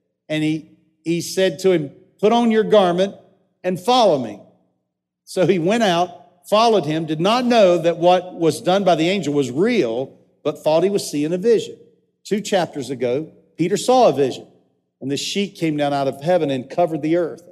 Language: English